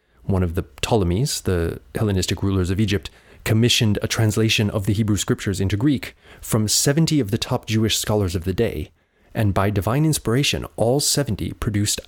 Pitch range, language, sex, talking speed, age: 90-115 Hz, English, male, 175 wpm, 30-49